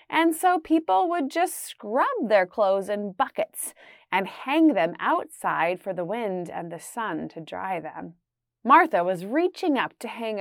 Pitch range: 205-330 Hz